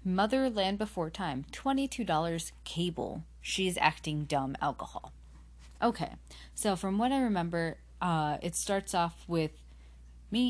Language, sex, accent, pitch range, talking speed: English, female, American, 145-175 Hz, 130 wpm